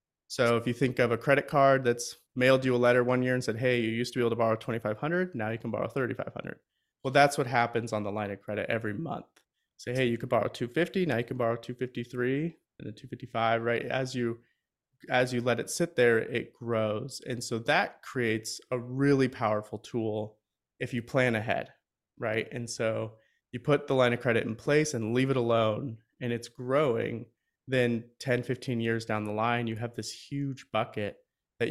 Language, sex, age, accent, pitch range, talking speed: English, male, 30-49, American, 110-130 Hz, 210 wpm